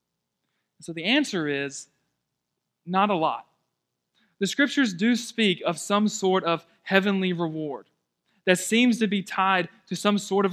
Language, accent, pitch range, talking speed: English, American, 155-200 Hz, 150 wpm